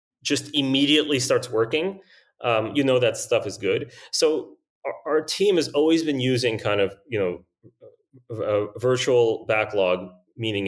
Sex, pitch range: male, 110-150 Hz